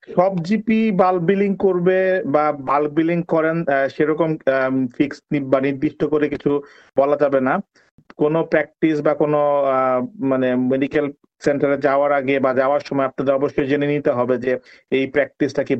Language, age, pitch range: Bengali, 50-69, 130-150 Hz